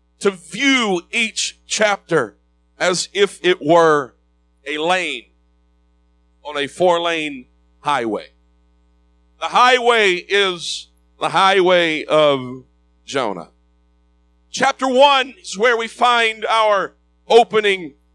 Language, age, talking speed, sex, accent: English, 50-69, 95 wpm, male, American